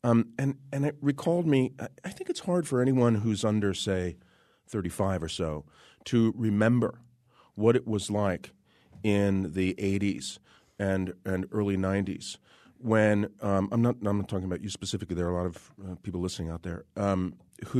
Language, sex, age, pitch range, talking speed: English, male, 40-59, 95-115 Hz, 180 wpm